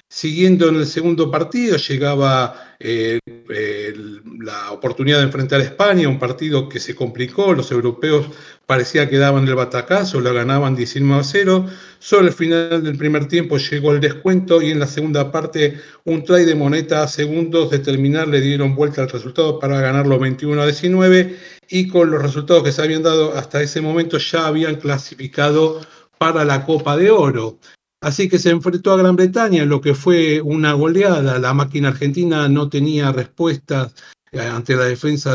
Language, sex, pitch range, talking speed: Spanish, male, 135-165 Hz, 175 wpm